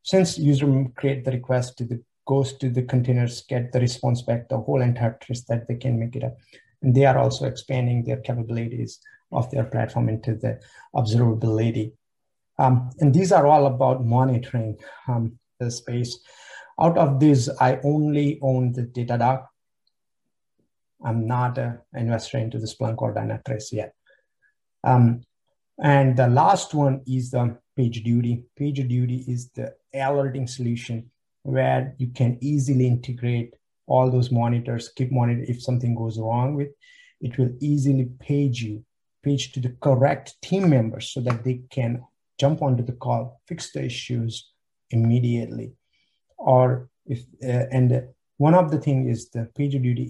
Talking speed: 155 wpm